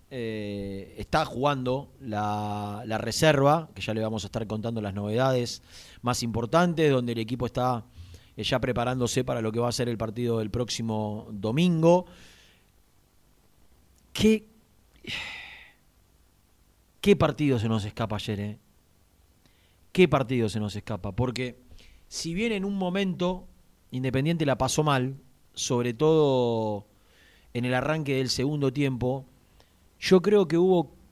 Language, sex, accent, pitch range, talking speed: Spanish, male, Argentinian, 105-140 Hz, 135 wpm